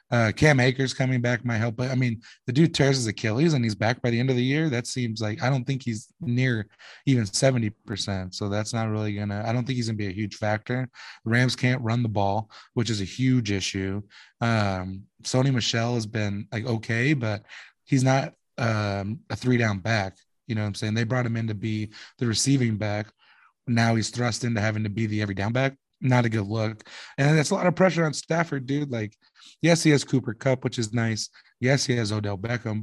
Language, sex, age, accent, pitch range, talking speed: English, male, 20-39, American, 110-130 Hz, 230 wpm